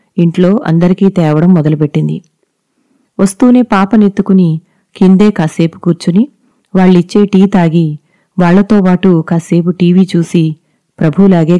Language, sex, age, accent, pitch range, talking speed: Telugu, female, 30-49, native, 170-205 Hz, 90 wpm